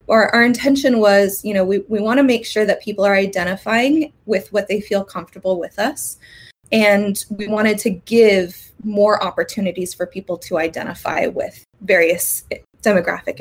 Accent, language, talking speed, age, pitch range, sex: American, English, 165 wpm, 20-39, 180-230 Hz, female